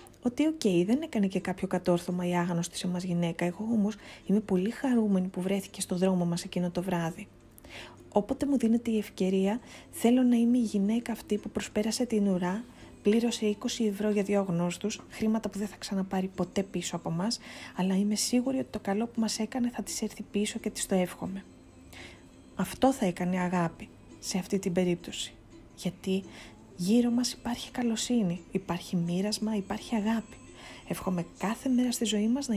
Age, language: 20-39, Greek